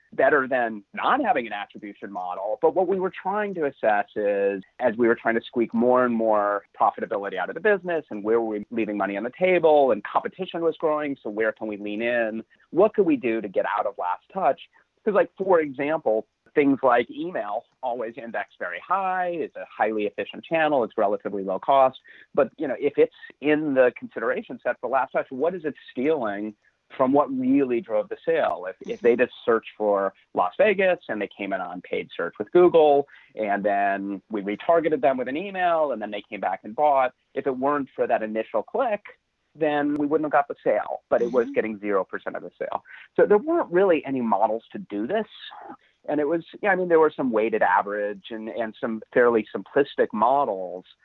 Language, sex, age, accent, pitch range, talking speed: English, male, 30-49, American, 110-170 Hz, 215 wpm